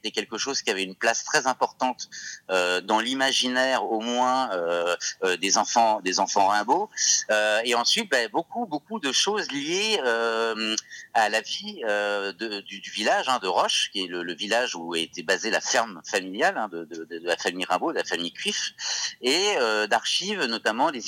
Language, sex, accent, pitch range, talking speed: French, male, French, 100-140 Hz, 195 wpm